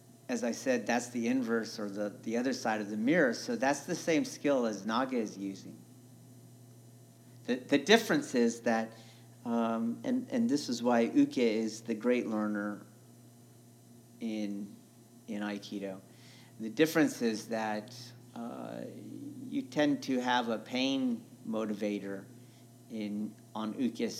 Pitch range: 105-125 Hz